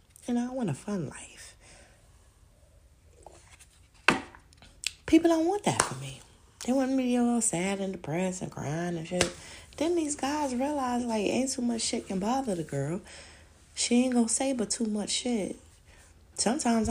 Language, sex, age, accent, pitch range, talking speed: English, female, 30-49, American, 135-215 Hz, 165 wpm